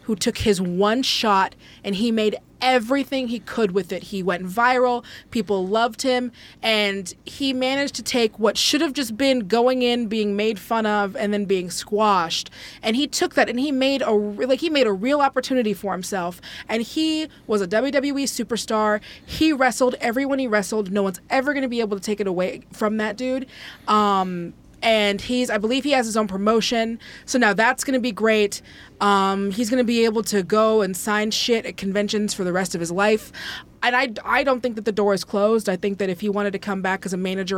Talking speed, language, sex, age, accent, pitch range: 220 wpm, English, female, 20-39, American, 195-250 Hz